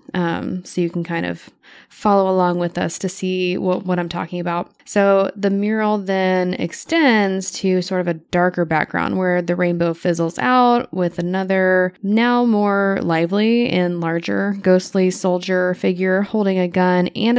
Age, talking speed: 10-29, 160 wpm